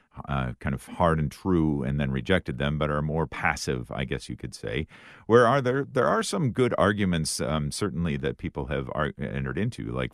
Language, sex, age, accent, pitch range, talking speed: English, male, 50-69, American, 70-95 Hz, 215 wpm